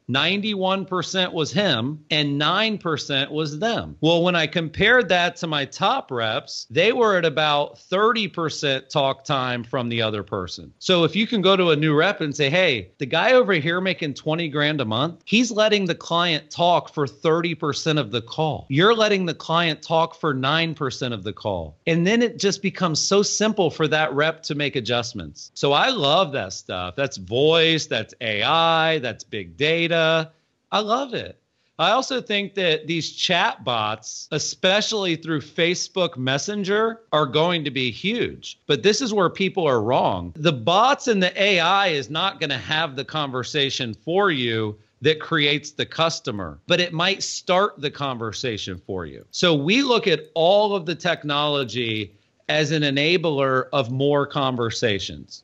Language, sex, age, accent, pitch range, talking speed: English, male, 40-59, American, 135-180 Hz, 170 wpm